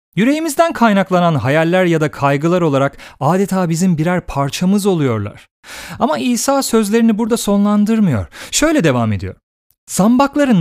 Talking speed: 120 wpm